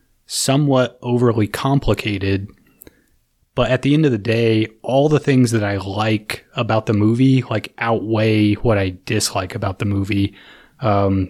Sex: male